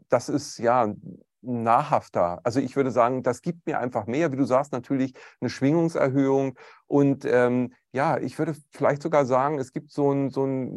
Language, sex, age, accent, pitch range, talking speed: German, male, 40-59, German, 115-140 Hz, 185 wpm